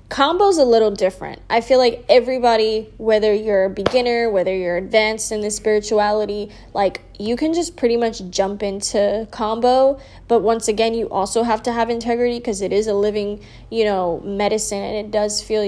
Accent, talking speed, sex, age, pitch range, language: American, 190 wpm, female, 10-29, 190-225 Hz, English